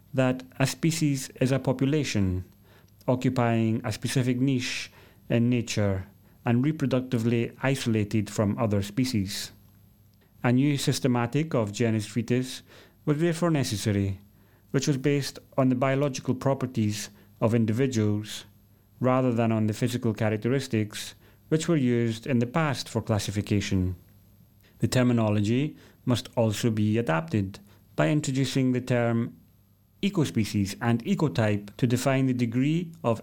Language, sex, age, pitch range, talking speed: English, male, 30-49, 105-130 Hz, 125 wpm